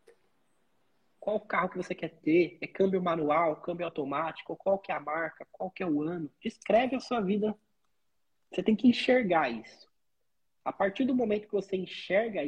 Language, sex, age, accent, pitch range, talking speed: Portuguese, male, 20-39, Brazilian, 165-215 Hz, 180 wpm